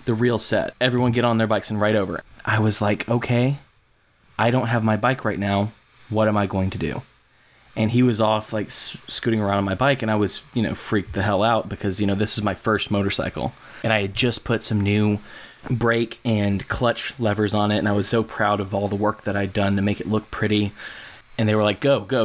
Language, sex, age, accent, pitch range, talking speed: English, male, 20-39, American, 105-125 Hz, 245 wpm